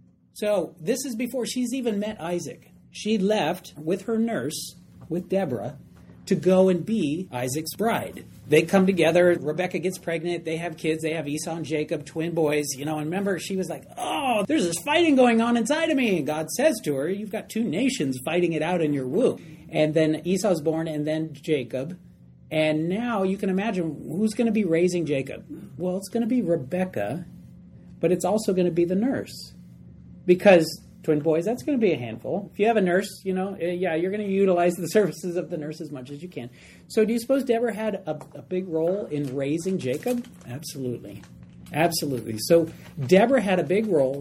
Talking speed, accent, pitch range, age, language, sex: 200 wpm, American, 145-190 Hz, 40-59, English, male